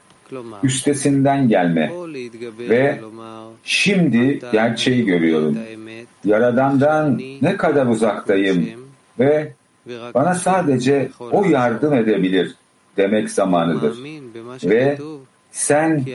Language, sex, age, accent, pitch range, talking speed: English, male, 50-69, Turkish, 110-145 Hz, 75 wpm